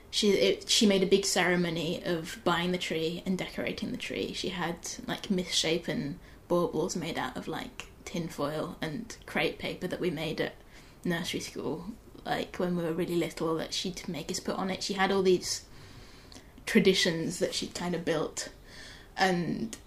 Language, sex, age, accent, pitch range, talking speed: English, female, 20-39, British, 175-195 Hz, 175 wpm